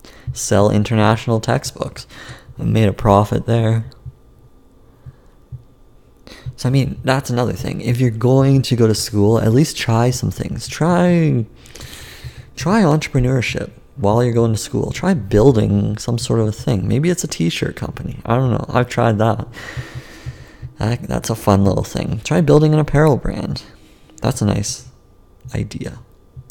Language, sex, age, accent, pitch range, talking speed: English, male, 30-49, American, 100-130 Hz, 150 wpm